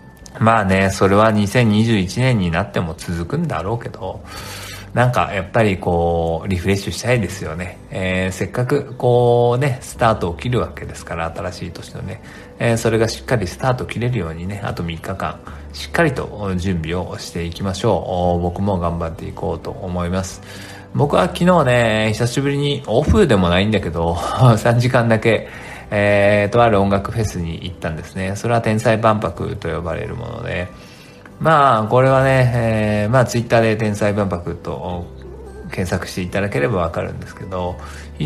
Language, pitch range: Japanese, 90-115 Hz